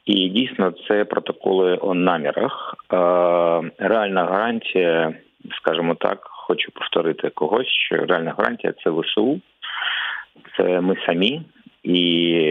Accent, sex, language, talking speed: native, male, Ukrainian, 110 wpm